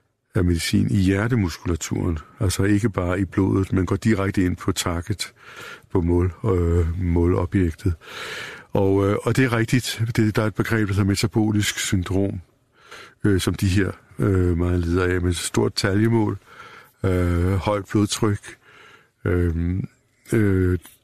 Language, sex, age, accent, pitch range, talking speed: Danish, male, 60-79, native, 90-105 Hz, 145 wpm